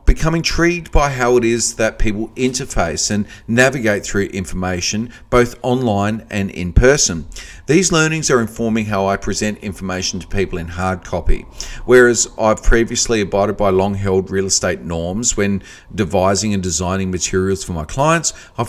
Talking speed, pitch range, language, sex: 155 wpm, 95-120 Hz, English, male